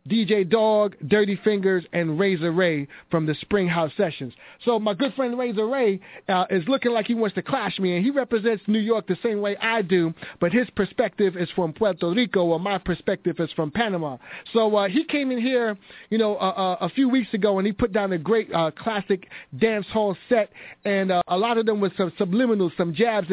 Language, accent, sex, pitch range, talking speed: English, American, male, 180-230 Hz, 220 wpm